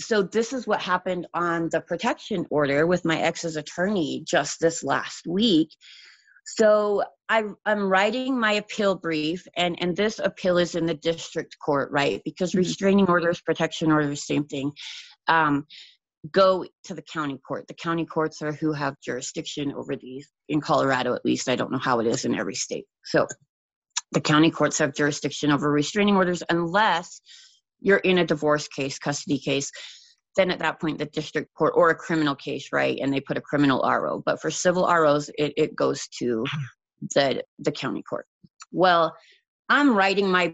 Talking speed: 175 wpm